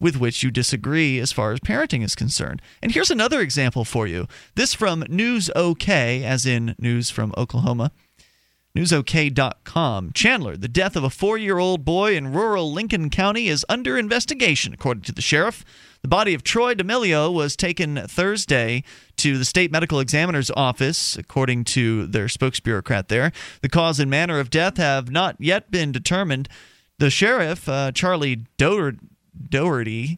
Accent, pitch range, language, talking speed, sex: American, 130-175 Hz, English, 160 wpm, male